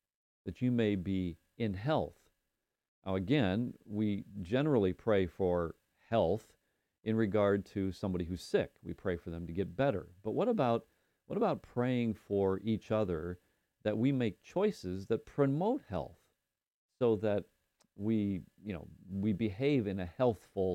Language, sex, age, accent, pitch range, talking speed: English, male, 40-59, American, 95-120 Hz, 150 wpm